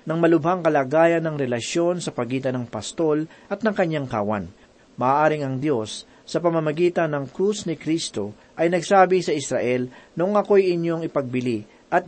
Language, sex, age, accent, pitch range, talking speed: Filipino, male, 40-59, native, 140-180 Hz, 155 wpm